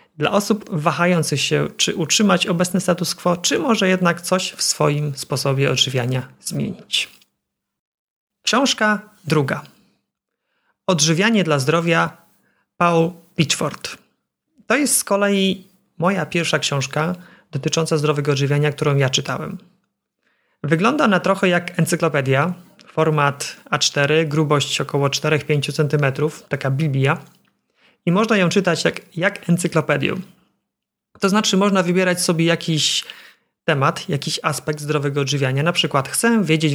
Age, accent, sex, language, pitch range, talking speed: 30-49, native, male, Polish, 150-185 Hz, 120 wpm